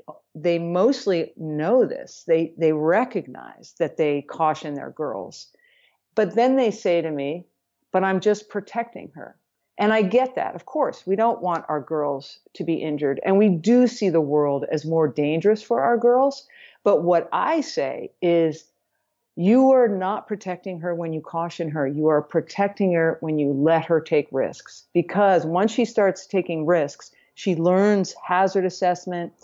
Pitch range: 155-195 Hz